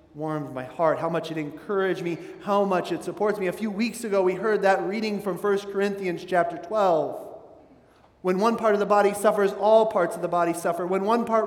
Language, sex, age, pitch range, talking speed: English, male, 30-49, 165-210 Hz, 220 wpm